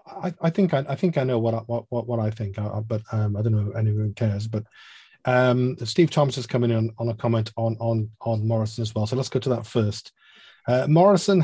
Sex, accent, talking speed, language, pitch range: male, British, 255 wpm, English, 115-140 Hz